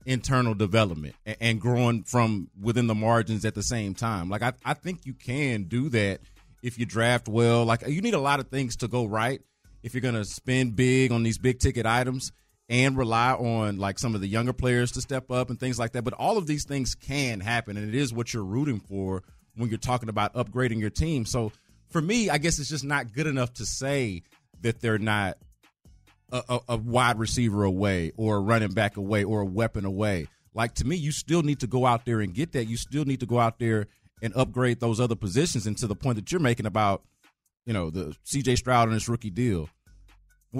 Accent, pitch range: American, 105-135 Hz